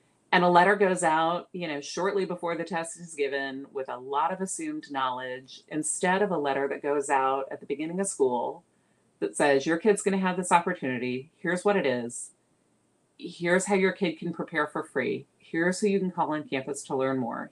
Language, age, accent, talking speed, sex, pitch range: English, 40-59, American, 210 wpm, female, 150-185 Hz